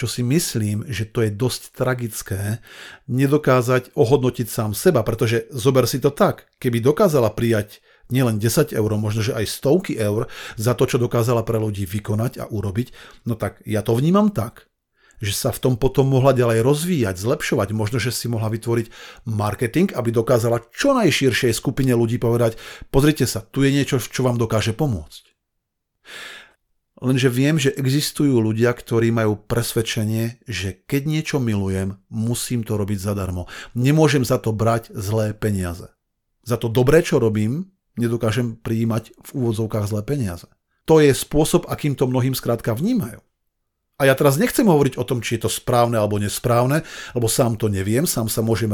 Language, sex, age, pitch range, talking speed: Slovak, male, 50-69, 110-135 Hz, 165 wpm